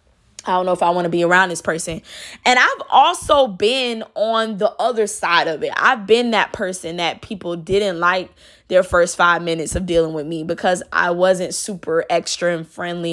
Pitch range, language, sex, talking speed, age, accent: 175-210 Hz, English, female, 200 wpm, 20-39, American